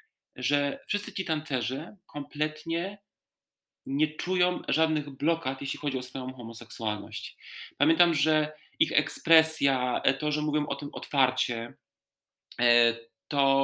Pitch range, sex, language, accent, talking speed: 135-160 Hz, male, Polish, native, 110 wpm